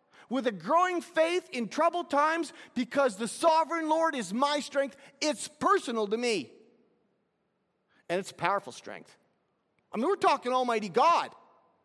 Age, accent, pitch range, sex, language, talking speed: 40-59, American, 220-310 Hz, male, English, 140 wpm